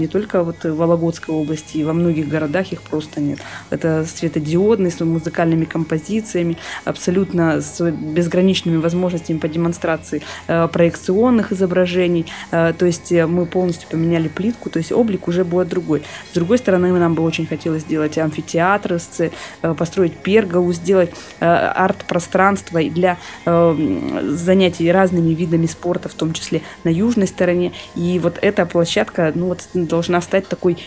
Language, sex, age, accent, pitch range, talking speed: Russian, female, 20-39, native, 165-185 Hz, 135 wpm